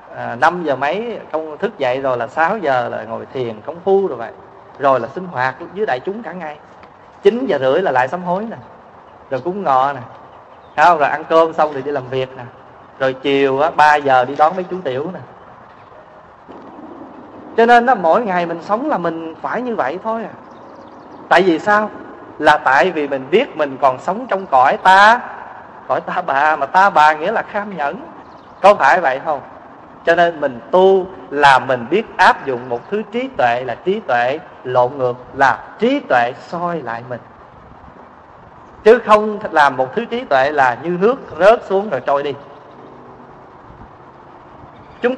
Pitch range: 140-220 Hz